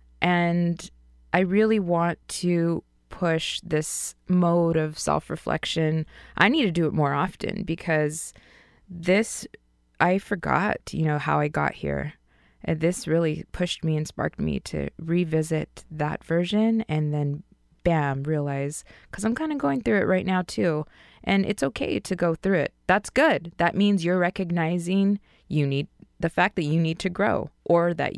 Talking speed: 165 wpm